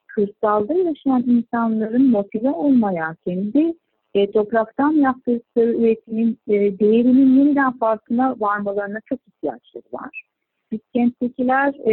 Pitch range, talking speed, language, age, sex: 210-265 Hz, 95 wpm, Turkish, 50-69, female